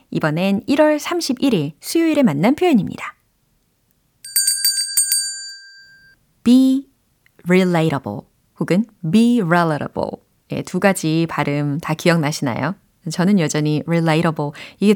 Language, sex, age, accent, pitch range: Korean, female, 30-49, native, 160-245 Hz